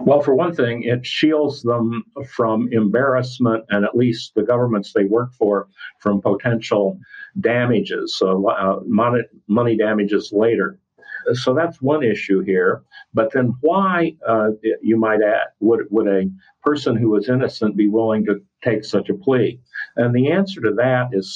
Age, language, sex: 50-69, English, male